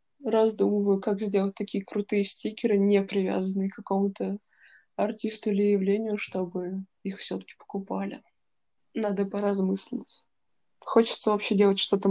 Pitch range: 195-210 Hz